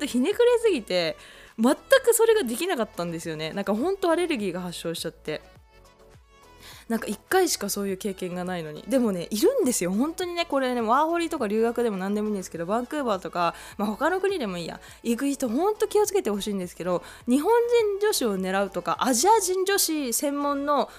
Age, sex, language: 20-39, female, Japanese